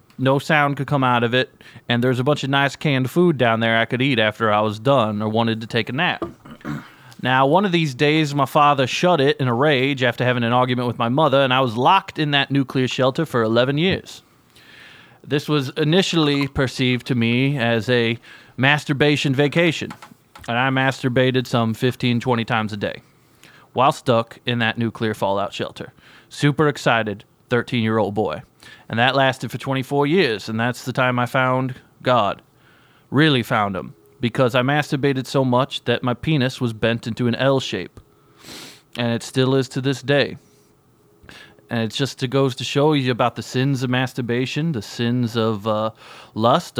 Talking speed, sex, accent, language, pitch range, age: 185 wpm, male, American, English, 120-140 Hz, 30-49